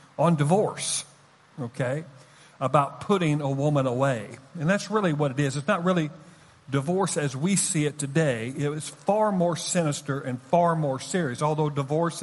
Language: English